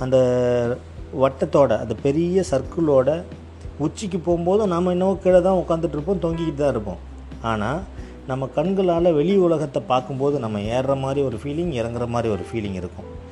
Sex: male